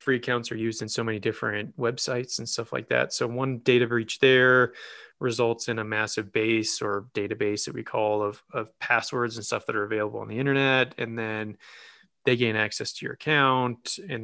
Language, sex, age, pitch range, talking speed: English, male, 20-39, 110-130 Hz, 200 wpm